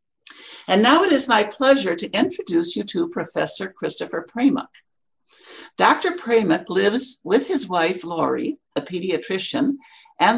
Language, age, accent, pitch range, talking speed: English, 60-79, American, 175-285 Hz, 135 wpm